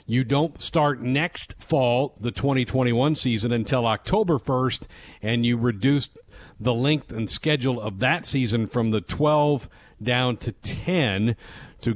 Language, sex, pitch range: English, male, 115-150 Hz